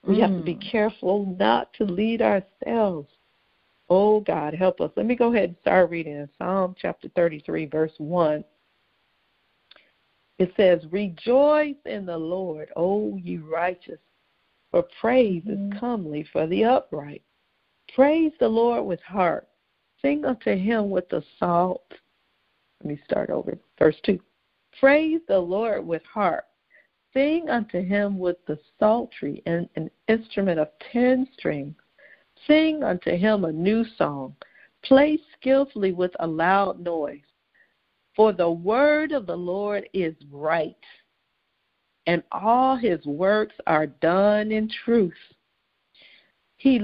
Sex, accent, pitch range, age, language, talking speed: female, American, 175-235 Hz, 50-69, English, 135 wpm